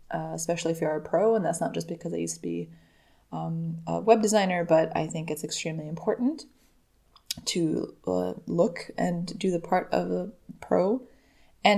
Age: 20-39